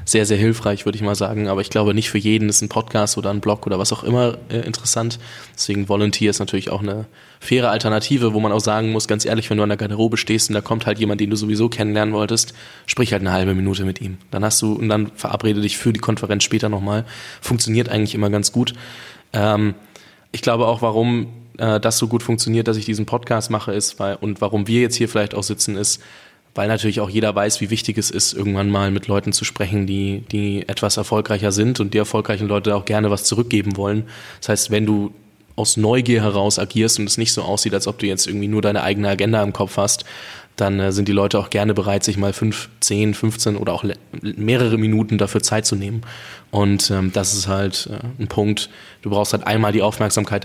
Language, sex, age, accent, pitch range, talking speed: German, male, 20-39, German, 100-110 Hz, 230 wpm